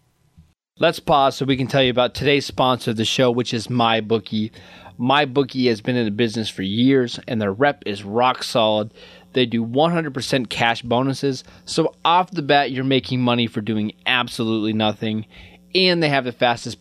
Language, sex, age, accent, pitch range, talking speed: English, male, 20-39, American, 110-140 Hz, 180 wpm